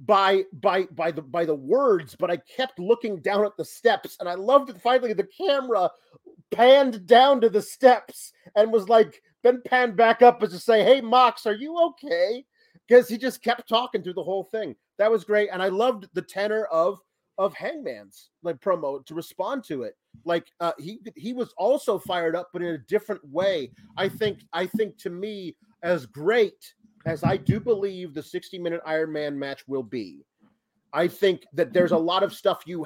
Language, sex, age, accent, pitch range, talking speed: English, male, 30-49, American, 165-220 Hz, 200 wpm